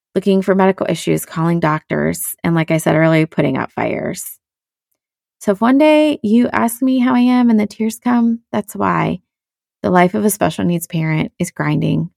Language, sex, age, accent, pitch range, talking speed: English, female, 30-49, American, 170-215 Hz, 190 wpm